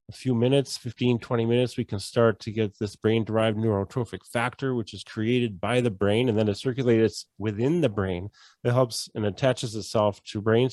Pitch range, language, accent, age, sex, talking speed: 105-130 Hz, English, American, 30-49, male, 200 wpm